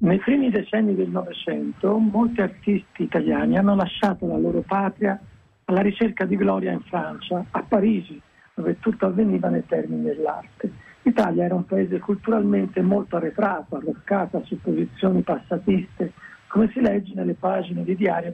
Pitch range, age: 185-220 Hz, 60-79